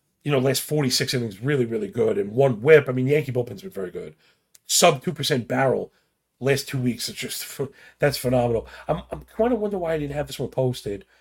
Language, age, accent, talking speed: English, 40-59, American, 220 wpm